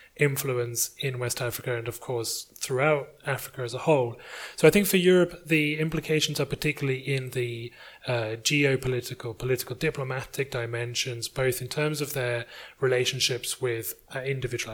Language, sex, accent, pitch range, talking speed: English, male, British, 120-140 Hz, 150 wpm